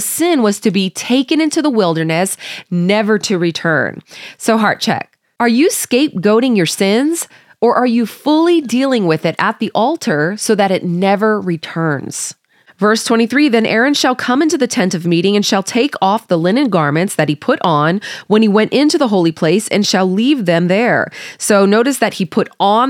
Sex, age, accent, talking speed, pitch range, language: female, 30-49, American, 195 wpm, 175-235 Hz, English